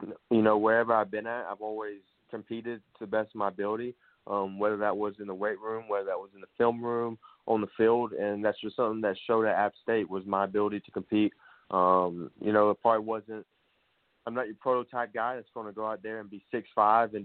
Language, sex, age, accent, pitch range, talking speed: English, male, 20-39, American, 100-110 Hz, 235 wpm